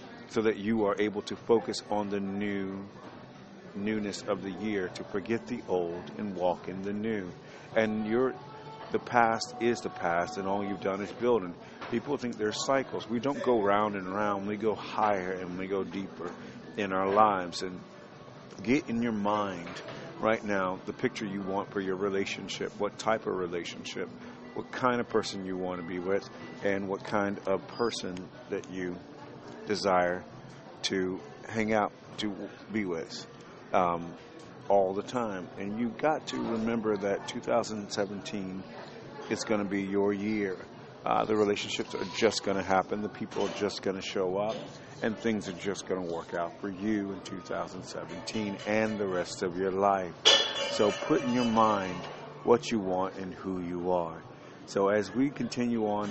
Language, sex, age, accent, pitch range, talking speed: English, male, 40-59, American, 95-110 Hz, 175 wpm